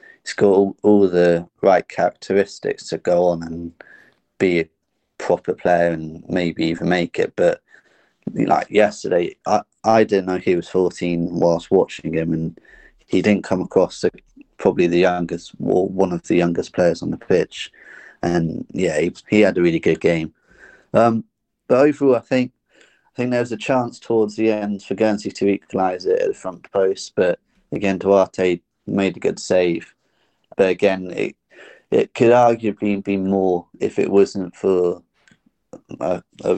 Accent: British